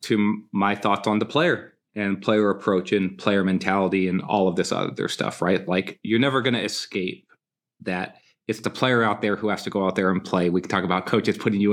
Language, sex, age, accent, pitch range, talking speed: English, male, 30-49, American, 100-130 Hz, 235 wpm